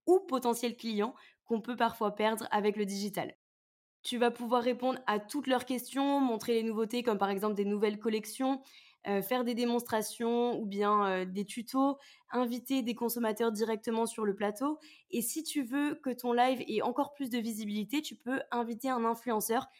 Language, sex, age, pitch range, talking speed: French, female, 20-39, 215-260 Hz, 180 wpm